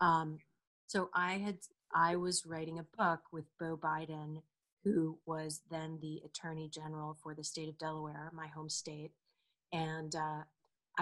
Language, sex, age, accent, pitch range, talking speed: English, female, 30-49, American, 150-165 Hz, 150 wpm